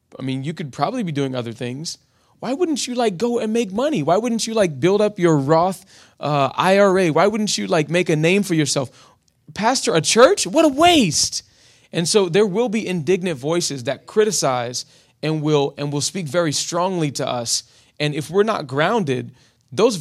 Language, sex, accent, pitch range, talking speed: English, male, American, 130-180 Hz, 195 wpm